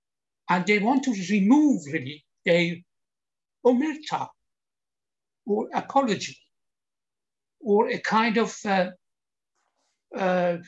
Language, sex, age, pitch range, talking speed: Persian, male, 60-79, 165-215 Hz, 90 wpm